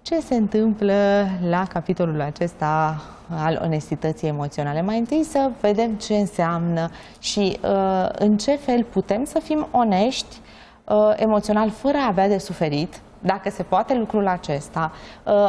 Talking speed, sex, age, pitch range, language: 130 wpm, female, 20-39, 180-230 Hz, Romanian